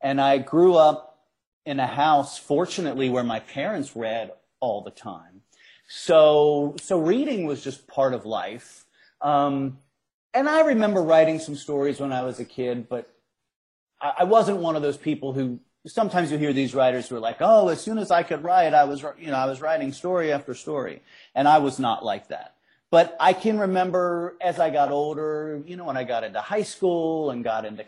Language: English